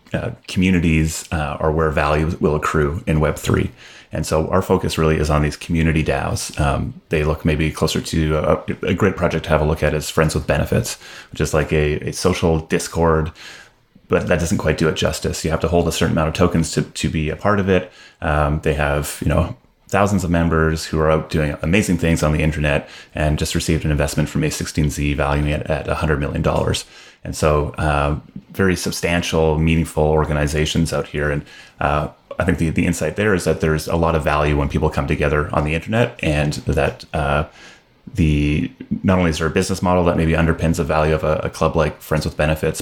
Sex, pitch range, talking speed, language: male, 75-85 Hz, 215 wpm, English